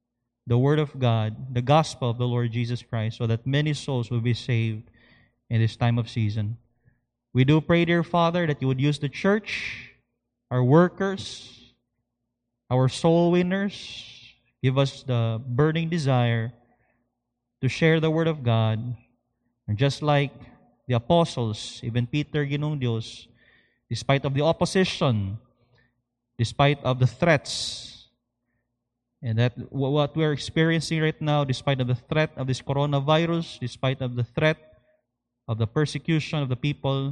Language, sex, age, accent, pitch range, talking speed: English, male, 20-39, Filipino, 120-145 Hz, 145 wpm